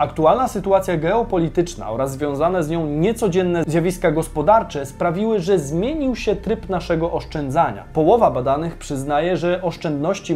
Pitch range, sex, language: 145-195 Hz, male, Polish